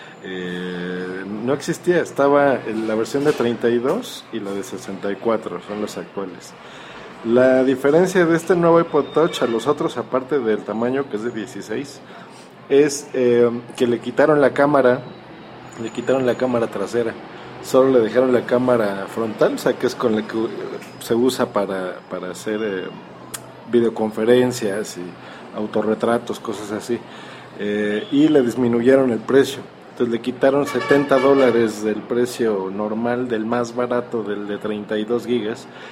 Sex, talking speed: male, 150 wpm